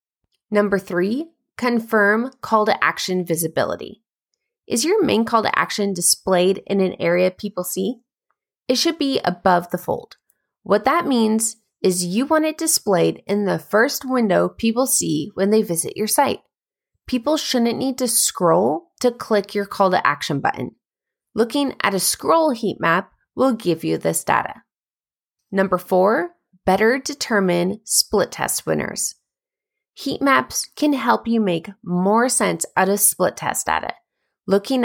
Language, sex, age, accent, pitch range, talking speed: English, female, 20-39, American, 190-255 Hz, 140 wpm